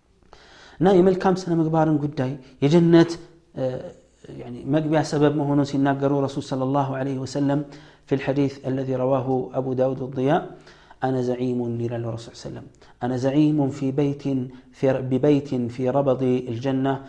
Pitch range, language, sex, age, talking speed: 125-150 Hz, Amharic, male, 40-59, 135 wpm